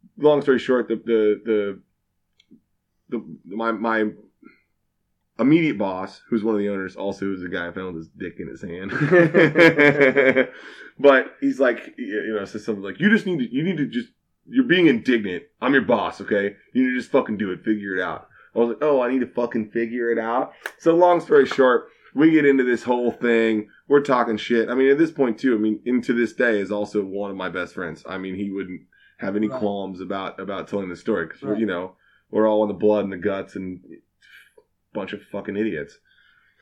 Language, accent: English, American